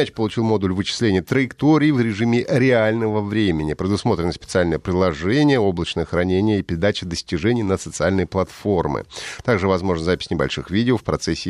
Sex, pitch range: male, 90-125 Hz